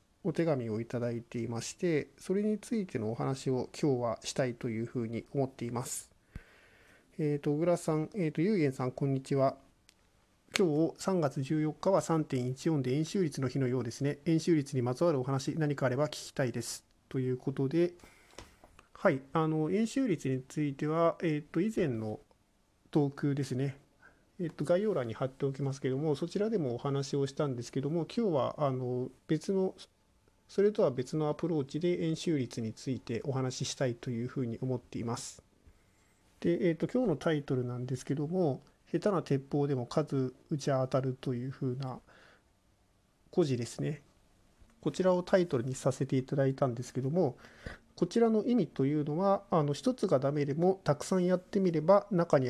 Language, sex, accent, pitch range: Japanese, male, native, 125-165 Hz